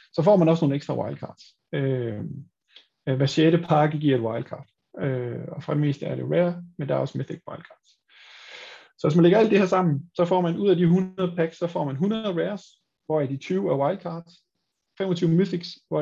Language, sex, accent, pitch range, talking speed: Danish, male, native, 140-175 Hz, 215 wpm